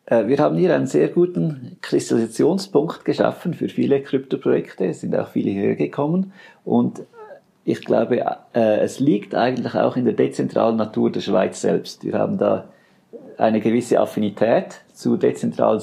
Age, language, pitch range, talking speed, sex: 50-69, German, 105-125 Hz, 145 wpm, male